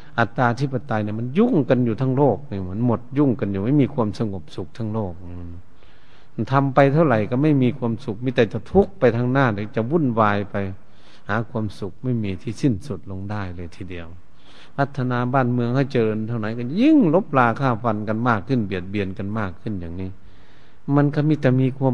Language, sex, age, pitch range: Thai, male, 60-79, 100-130 Hz